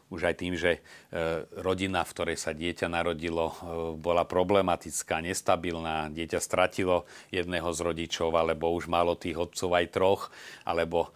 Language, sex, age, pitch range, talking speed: Slovak, male, 40-59, 85-100 Hz, 140 wpm